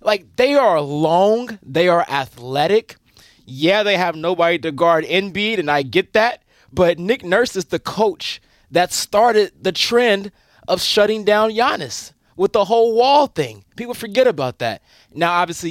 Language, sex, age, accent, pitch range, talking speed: English, male, 20-39, American, 160-230 Hz, 165 wpm